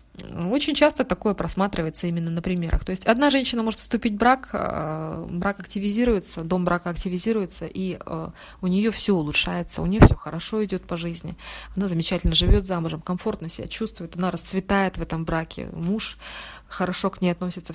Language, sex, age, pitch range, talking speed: Russian, female, 20-39, 160-200 Hz, 165 wpm